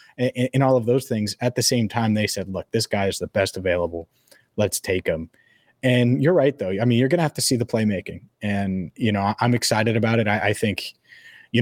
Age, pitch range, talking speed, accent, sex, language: 30-49, 100-125 Hz, 245 wpm, American, male, English